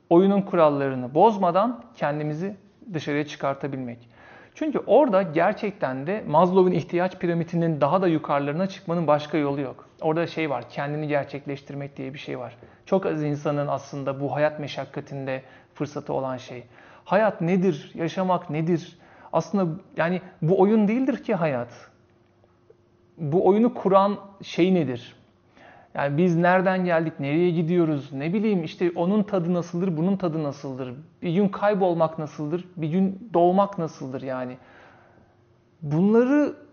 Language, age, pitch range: Turkish, 40-59, 140-190 Hz